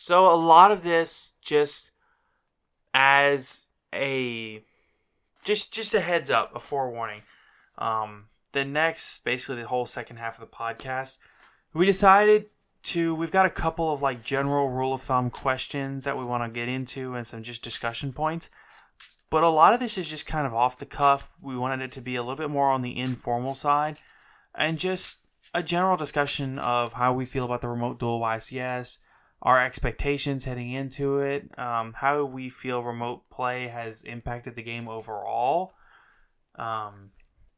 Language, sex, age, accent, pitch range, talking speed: English, male, 20-39, American, 120-155 Hz, 170 wpm